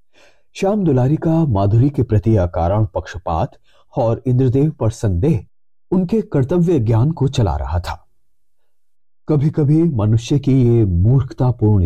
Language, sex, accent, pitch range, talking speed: Hindi, male, native, 105-155 Hz, 125 wpm